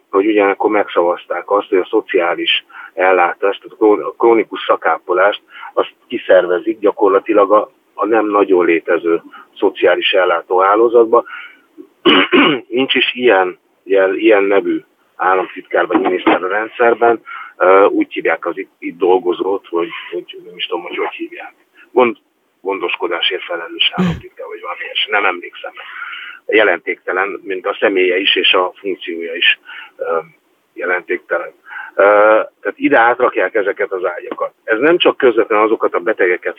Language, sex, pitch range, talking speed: Hungarian, male, 350-470 Hz, 125 wpm